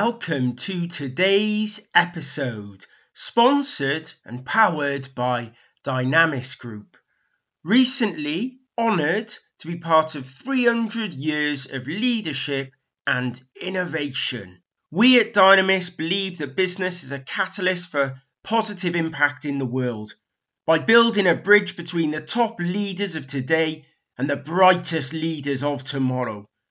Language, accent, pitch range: English, British, 140-195 Hz